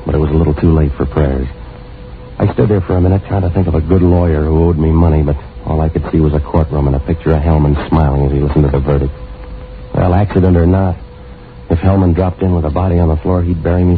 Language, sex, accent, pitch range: English, male, American, 75-90 Hz